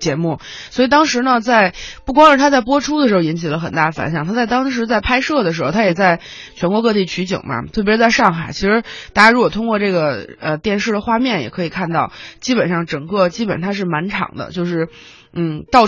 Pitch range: 170-240 Hz